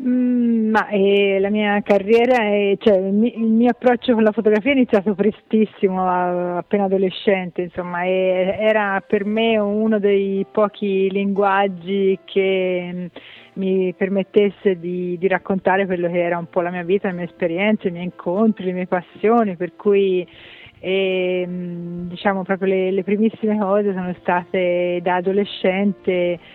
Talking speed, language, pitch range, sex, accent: 140 wpm, Italian, 180-205 Hz, female, native